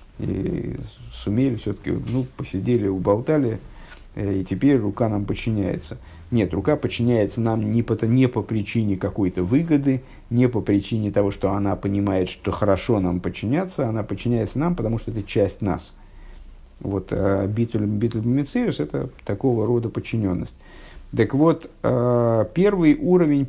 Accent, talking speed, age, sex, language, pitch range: native, 130 wpm, 50-69, male, Russian, 100-130 Hz